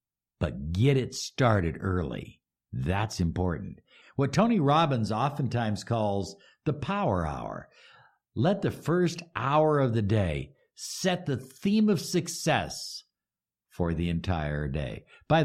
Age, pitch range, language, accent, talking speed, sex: 60-79, 85-140 Hz, English, American, 125 wpm, male